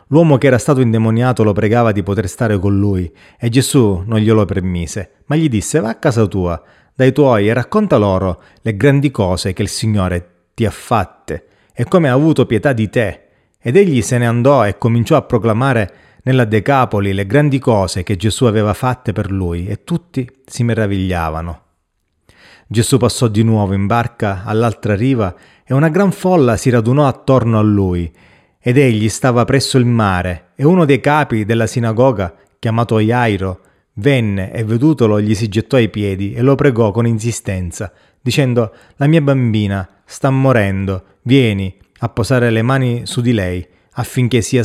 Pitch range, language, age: 100-130 Hz, Italian, 30-49